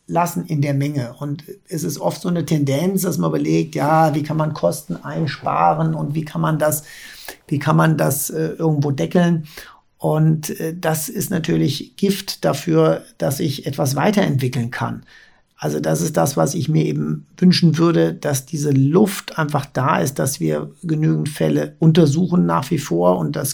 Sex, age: male, 50-69